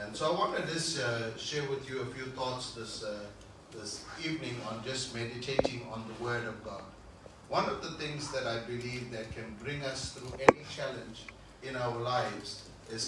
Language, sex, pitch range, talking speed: English, male, 115-145 Hz, 195 wpm